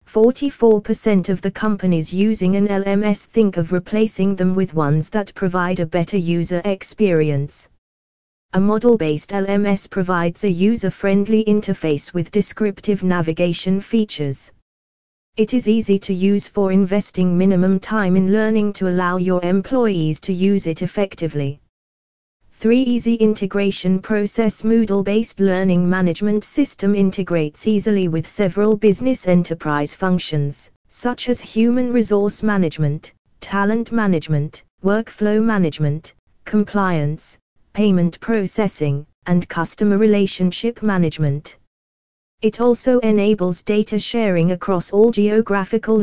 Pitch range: 165-210 Hz